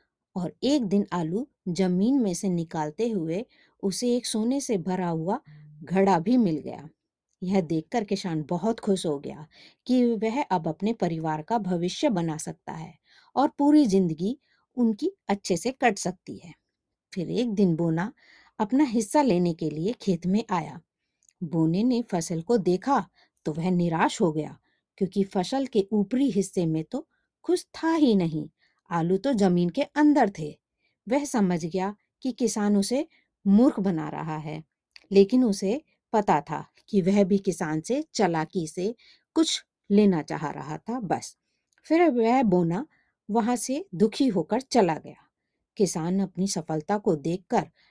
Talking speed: 155 wpm